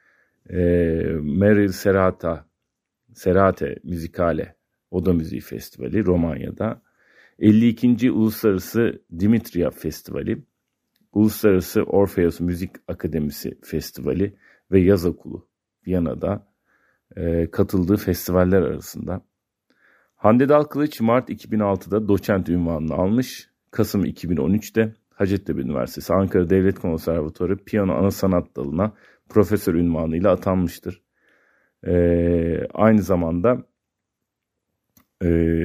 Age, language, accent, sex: 40-59, Turkish, native, male